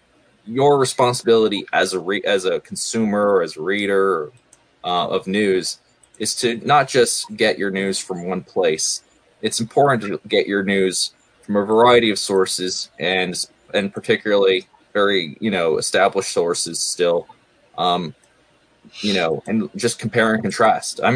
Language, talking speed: English, 155 wpm